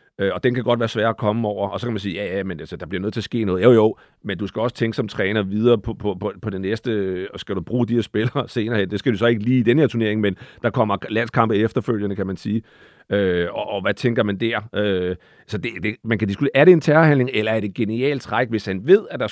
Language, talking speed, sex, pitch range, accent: Danish, 300 wpm, male, 110-130 Hz, native